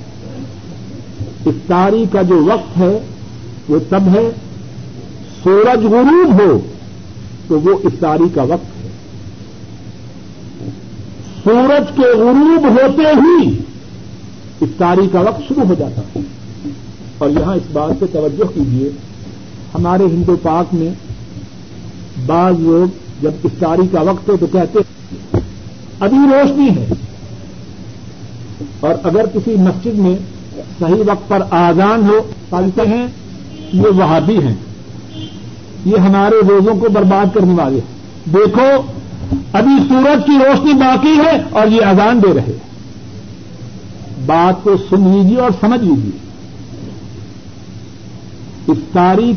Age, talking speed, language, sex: 50-69, 115 wpm, Urdu, male